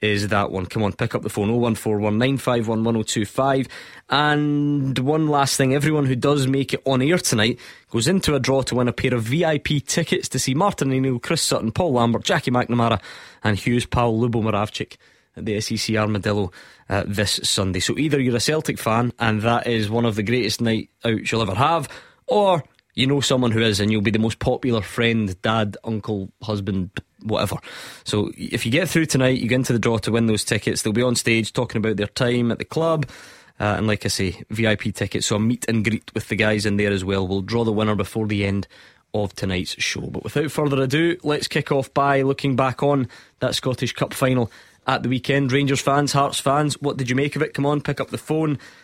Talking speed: 220 wpm